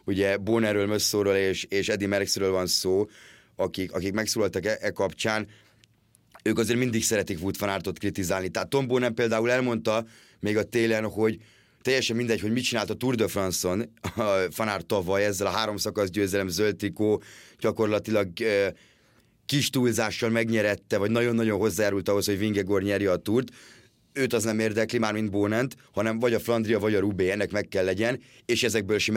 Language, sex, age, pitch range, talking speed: Hungarian, male, 30-49, 100-115 Hz, 170 wpm